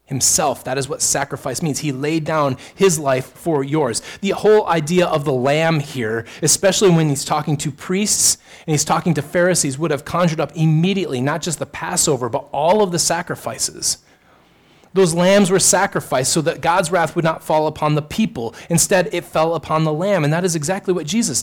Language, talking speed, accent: English, 200 wpm, American